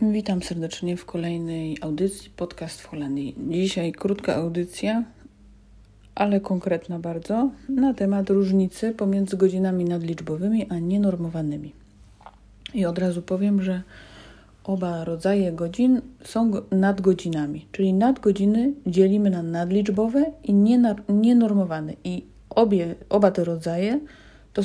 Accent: native